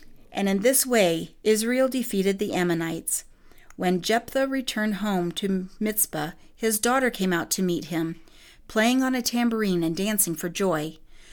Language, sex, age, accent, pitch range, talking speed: English, female, 40-59, American, 175-225 Hz, 155 wpm